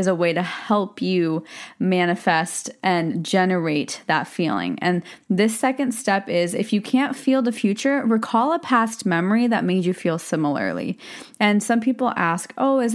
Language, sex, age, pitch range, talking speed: English, female, 20-39, 180-230 Hz, 165 wpm